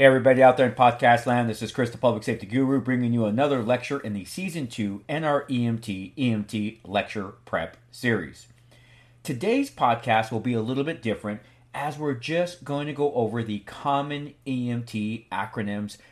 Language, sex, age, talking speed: English, male, 40-59, 170 wpm